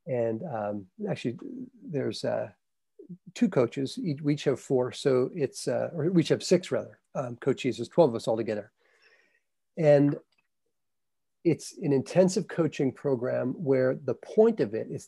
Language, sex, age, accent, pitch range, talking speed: English, male, 40-59, American, 125-160 Hz, 160 wpm